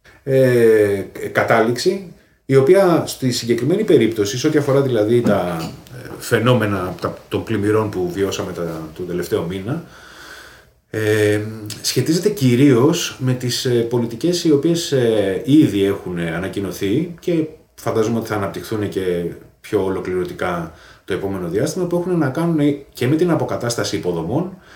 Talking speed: 125 wpm